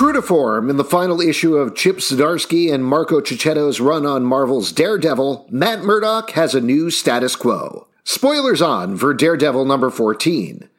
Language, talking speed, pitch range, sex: English, 165 wpm, 150-210 Hz, male